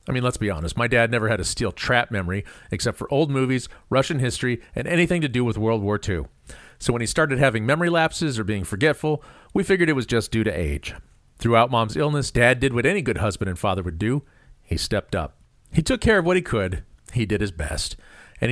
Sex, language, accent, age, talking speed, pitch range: male, English, American, 40-59, 235 wpm, 100-140 Hz